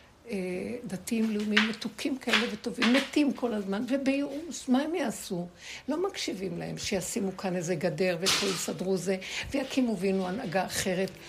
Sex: female